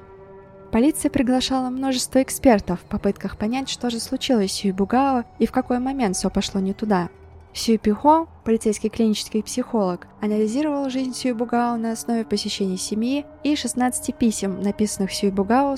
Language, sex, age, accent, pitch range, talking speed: Russian, female, 20-39, native, 200-245 Hz, 140 wpm